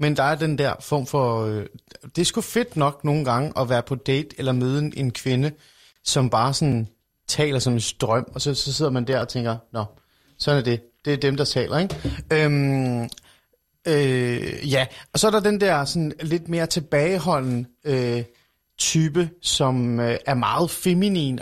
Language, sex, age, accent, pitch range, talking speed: Danish, male, 30-49, native, 125-160 Hz, 195 wpm